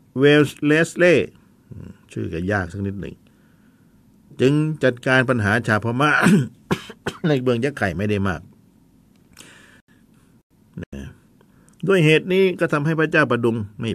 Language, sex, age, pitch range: Thai, male, 60-79, 100-135 Hz